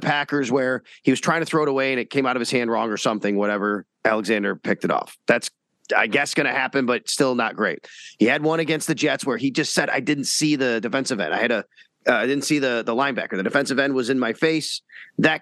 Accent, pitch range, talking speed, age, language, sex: American, 120-155 Hz, 265 wpm, 30-49, English, male